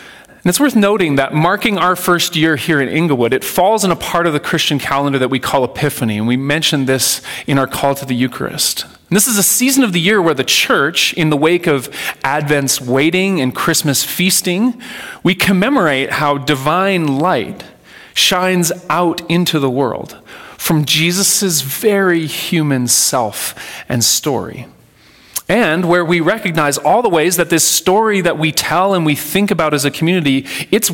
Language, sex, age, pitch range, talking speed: English, male, 30-49, 140-190 Hz, 180 wpm